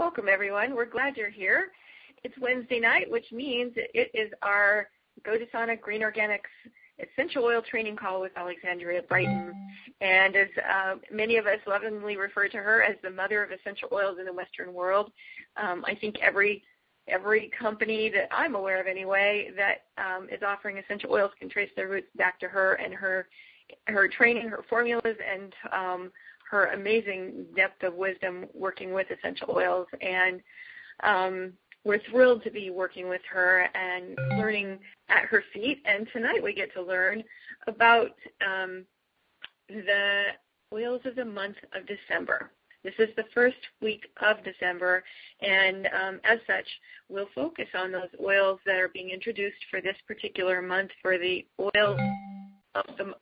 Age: 30-49